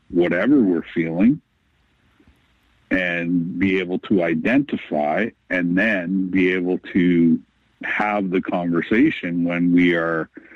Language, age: English, 50-69